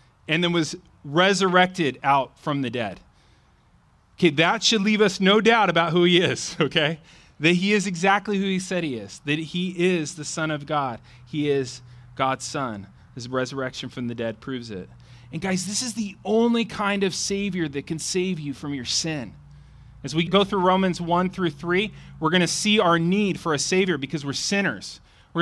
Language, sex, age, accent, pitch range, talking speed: English, male, 30-49, American, 145-200 Hz, 200 wpm